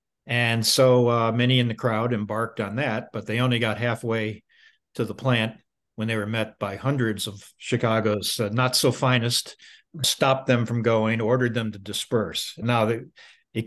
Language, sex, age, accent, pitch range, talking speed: English, male, 50-69, American, 105-125 Hz, 180 wpm